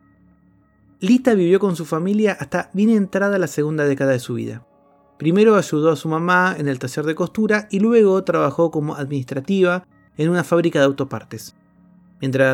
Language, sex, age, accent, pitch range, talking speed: Spanish, male, 30-49, Argentinian, 135-190 Hz, 165 wpm